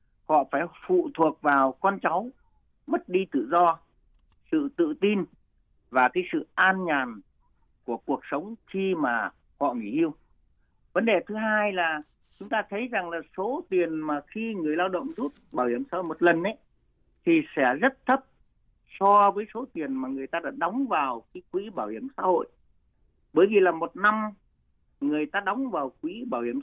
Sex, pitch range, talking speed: male, 160-250 Hz, 190 wpm